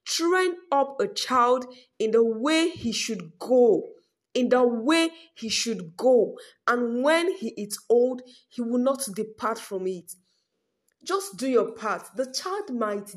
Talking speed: 155 wpm